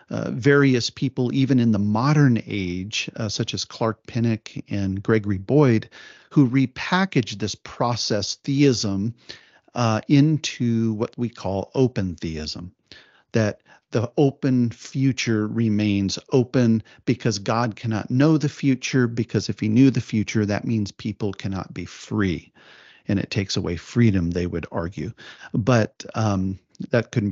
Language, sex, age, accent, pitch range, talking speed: English, male, 40-59, American, 105-135 Hz, 140 wpm